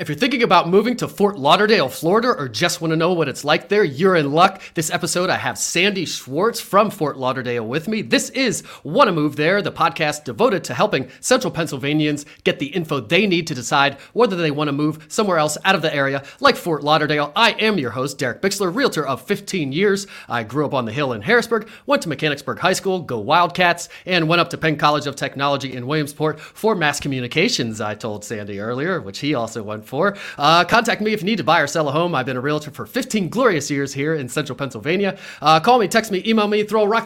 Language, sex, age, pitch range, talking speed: English, male, 30-49, 135-185 Hz, 235 wpm